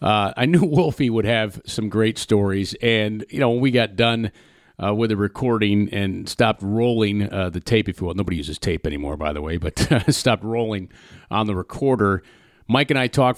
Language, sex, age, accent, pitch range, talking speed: English, male, 40-59, American, 90-120 Hz, 195 wpm